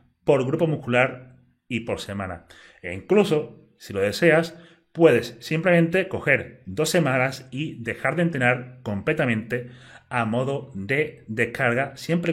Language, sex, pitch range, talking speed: Spanish, male, 115-160 Hz, 125 wpm